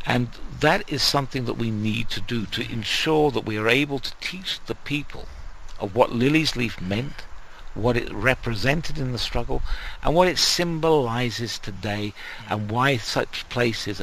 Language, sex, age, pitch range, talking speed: English, male, 60-79, 100-135 Hz, 165 wpm